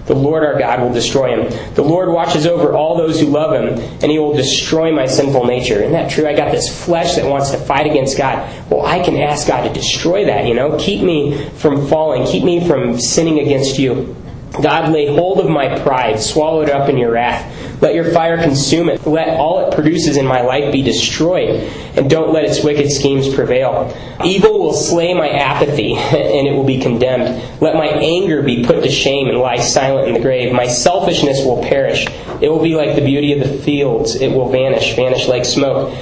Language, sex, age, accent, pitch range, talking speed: English, male, 20-39, American, 130-155 Hz, 220 wpm